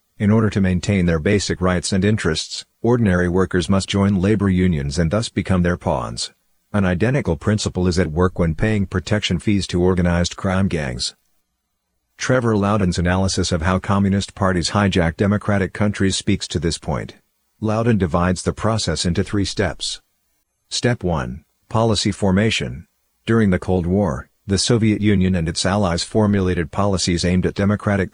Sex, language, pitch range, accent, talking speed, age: male, English, 90-105 Hz, American, 160 wpm, 50-69